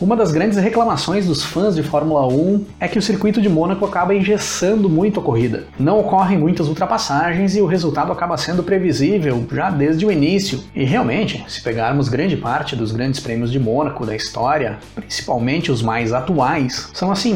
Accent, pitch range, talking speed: Brazilian, 140-210 Hz, 185 wpm